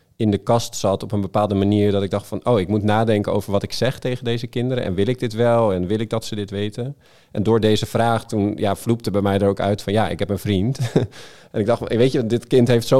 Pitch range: 95-110 Hz